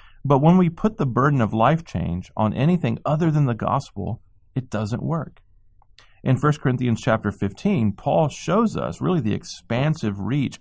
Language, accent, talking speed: English, American, 170 wpm